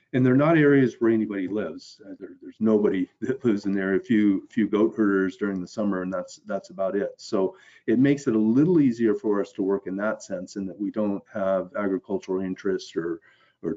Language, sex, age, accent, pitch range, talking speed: English, male, 40-59, American, 100-115 Hz, 220 wpm